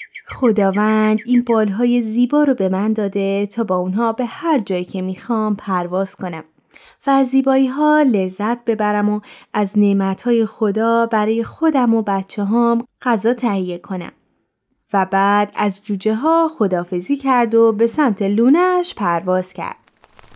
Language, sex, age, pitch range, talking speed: Persian, female, 20-39, 195-245 Hz, 140 wpm